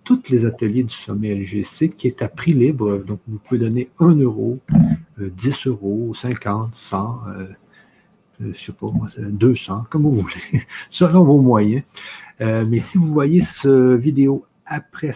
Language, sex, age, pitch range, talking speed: French, male, 50-69, 110-145 Hz, 160 wpm